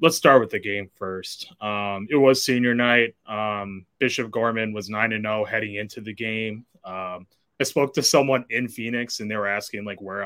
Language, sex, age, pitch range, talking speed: English, male, 20-39, 100-115 Hz, 200 wpm